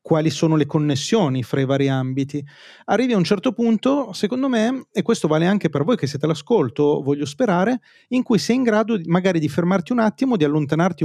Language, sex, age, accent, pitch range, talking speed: Italian, male, 30-49, native, 145-210 Hz, 205 wpm